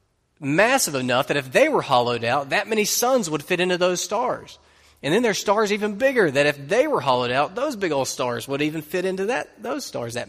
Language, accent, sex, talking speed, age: English, American, male, 235 wpm, 30-49